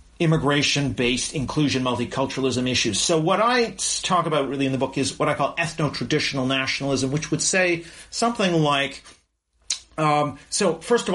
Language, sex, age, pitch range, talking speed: English, male, 40-59, 130-170 Hz, 150 wpm